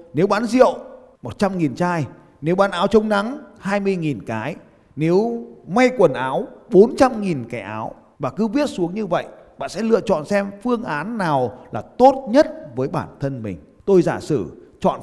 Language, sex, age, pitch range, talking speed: Vietnamese, male, 30-49, 135-210 Hz, 175 wpm